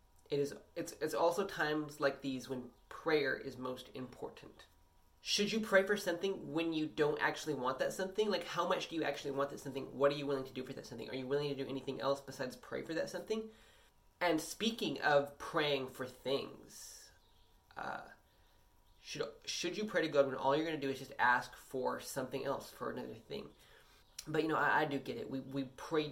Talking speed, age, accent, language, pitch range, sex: 215 wpm, 20-39, American, English, 135-170 Hz, male